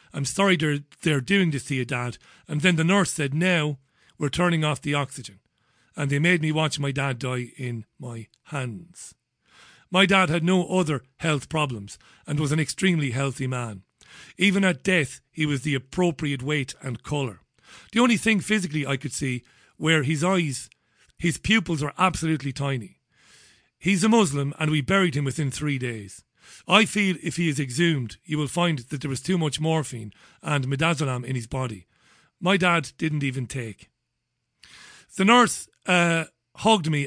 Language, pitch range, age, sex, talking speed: English, 135-170 Hz, 40-59, male, 175 wpm